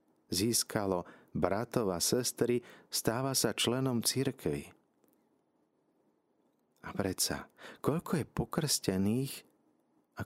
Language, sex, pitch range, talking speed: Slovak, male, 80-115 Hz, 80 wpm